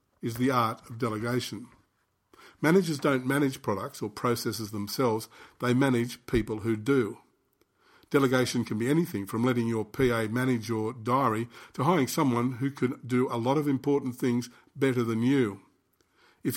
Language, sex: English, male